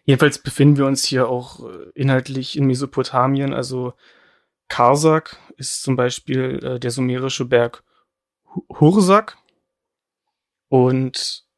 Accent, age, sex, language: German, 30-49, male, German